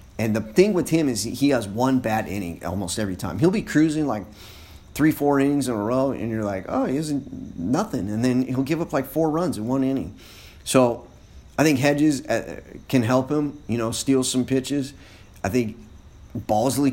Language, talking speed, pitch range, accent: English, 200 wpm, 100-145 Hz, American